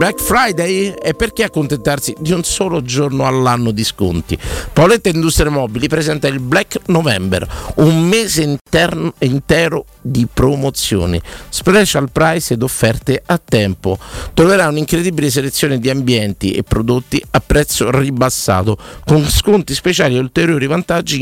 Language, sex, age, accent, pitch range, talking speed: Italian, male, 50-69, native, 120-170 Hz, 135 wpm